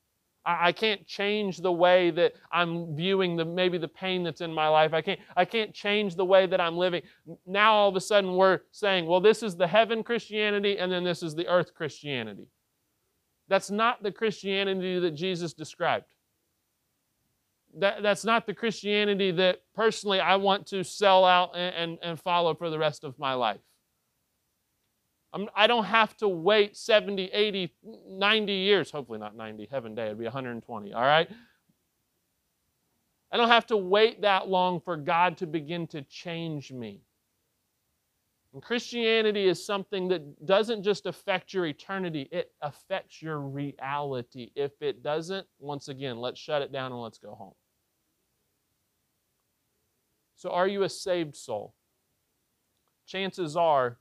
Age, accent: 40-59, American